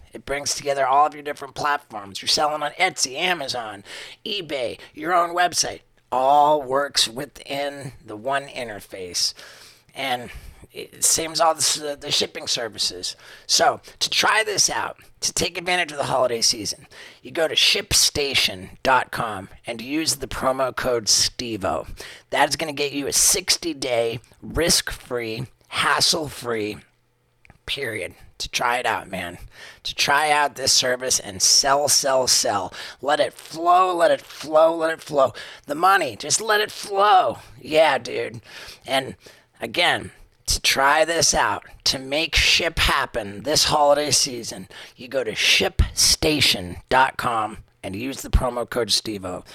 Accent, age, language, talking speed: American, 40-59, English, 150 wpm